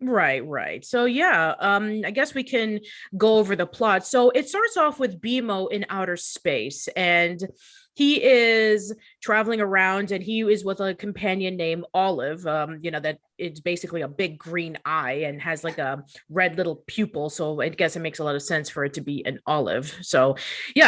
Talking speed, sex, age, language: 200 wpm, female, 30-49, English